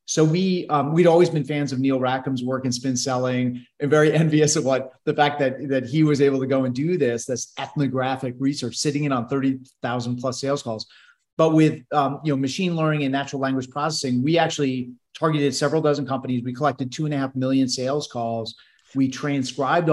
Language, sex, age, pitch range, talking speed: English, male, 30-49, 125-150 Hz, 210 wpm